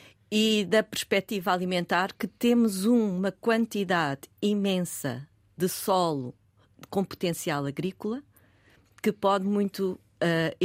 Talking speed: 100 wpm